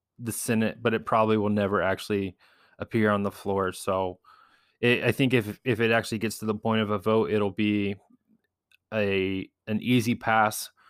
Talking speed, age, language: 180 wpm, 20-39, English